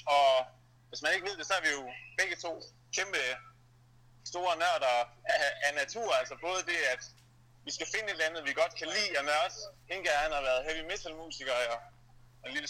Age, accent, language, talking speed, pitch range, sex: 30-49, native, Danish, 215 wpm, 120-145 Hz, male